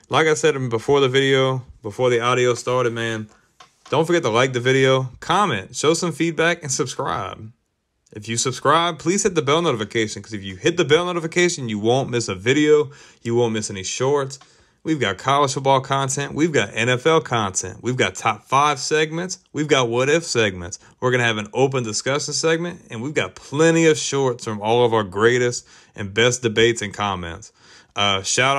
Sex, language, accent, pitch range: male, English, American, 115-145 Hz